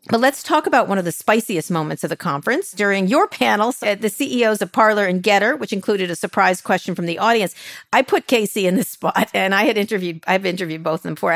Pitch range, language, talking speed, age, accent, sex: 160-210 Hz, English, 245 wpm, 50-69, American, female